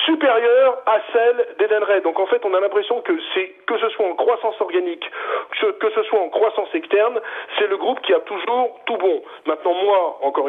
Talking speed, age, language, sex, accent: 200 wpm, 40-59, French, male, French